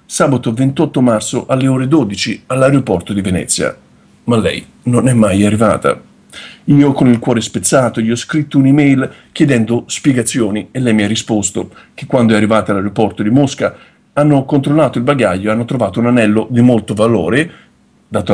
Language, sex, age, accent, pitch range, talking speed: Italian, male, 50-69, native, 110-140 Hz, 165 wpm